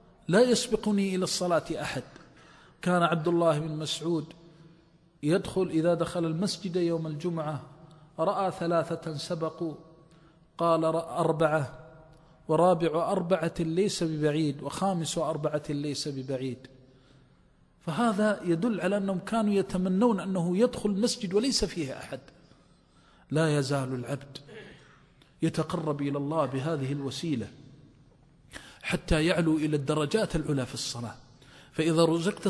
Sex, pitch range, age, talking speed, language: male, 150-185 Hz, 40-59, 105 wpm, Arabic